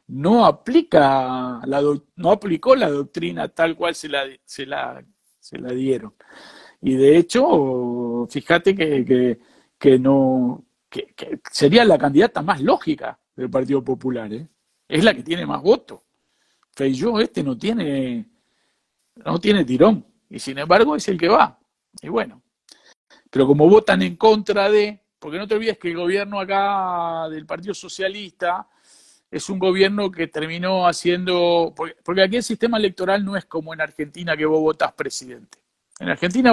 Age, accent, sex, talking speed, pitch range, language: 50-69, Argentinian, male, 160 wpm, 155-220 Hz, Spanish